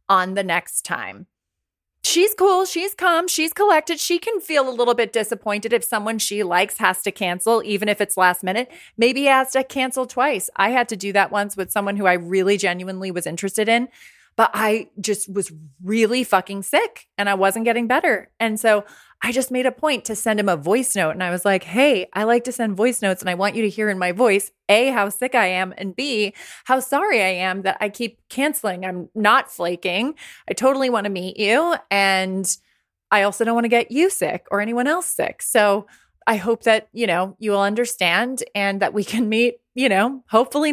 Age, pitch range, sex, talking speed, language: 20-39, 200-255 Hz, female, 220 wpm, English